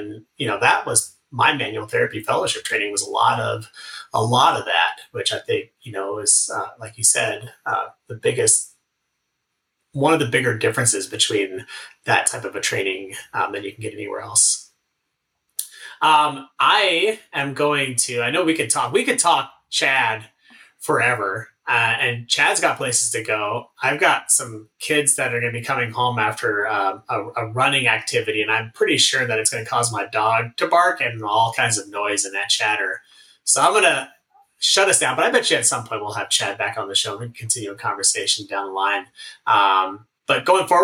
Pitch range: 115-155 Hz